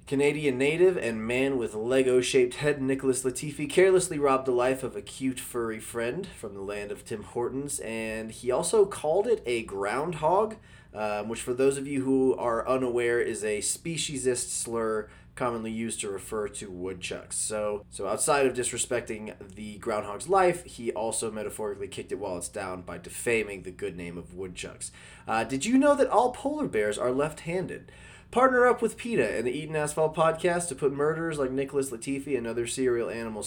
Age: 20-39